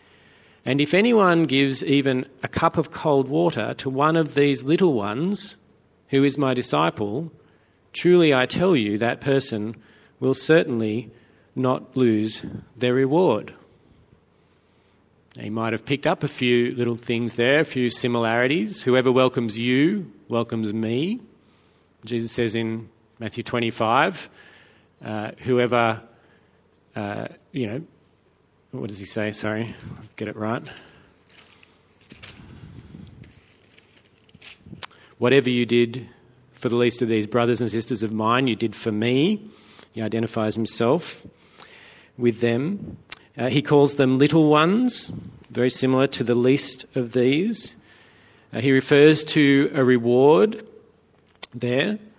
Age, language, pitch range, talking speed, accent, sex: 40-59, English, 115-140 Hz, 125 wpm, Australian, male